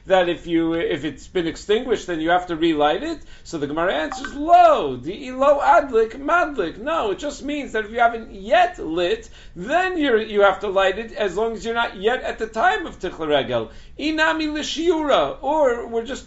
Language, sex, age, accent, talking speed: English, male, 50-69, American, 205 wpm